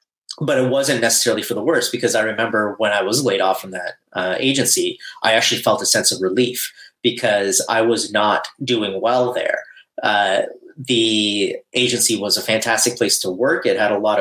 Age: 30-49